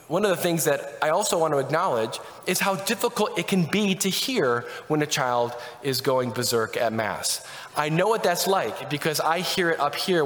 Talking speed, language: 215 wpm, English